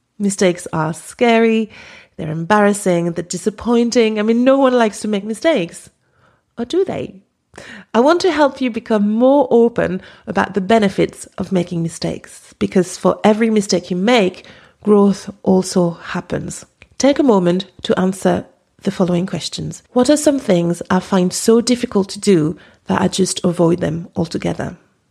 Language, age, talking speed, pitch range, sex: English, 30-49, 155 wpm, 180-235 Hz, female